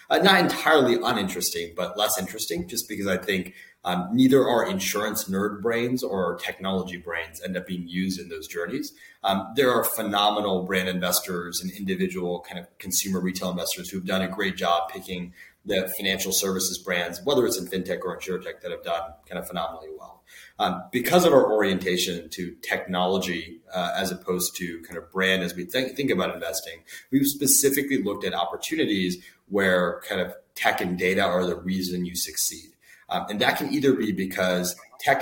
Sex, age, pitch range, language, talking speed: male, 30-49, 90-110 Hz, English, 180 wpm